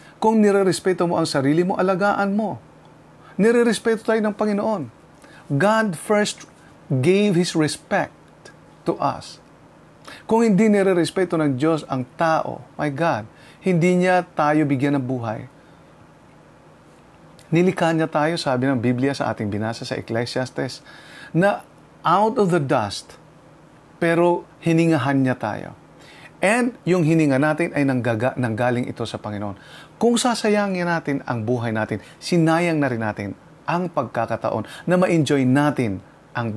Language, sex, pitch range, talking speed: English, male, 130-185 Hz, 130 wpm